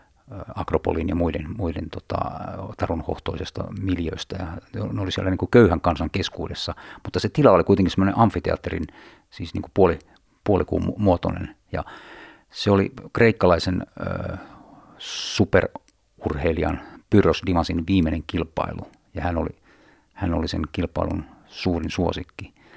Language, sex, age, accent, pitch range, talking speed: Finnish, male, 50-69, native, 85-100 Hz, 120 wpm